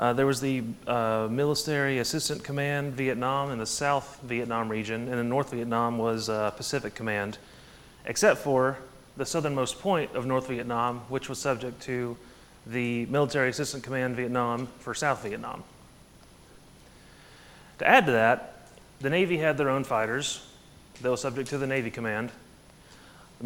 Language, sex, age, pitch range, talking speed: English, male, 30-49, 120-150 Hz, 150 wpm